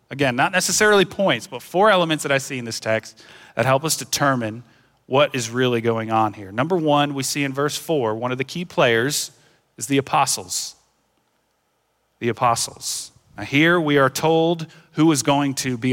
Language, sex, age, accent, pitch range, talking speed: English, male, 40-59, American, 130-165 Hz, 190 wpm